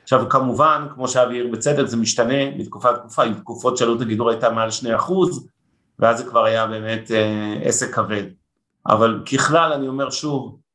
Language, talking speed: Hebrew, 175 wpm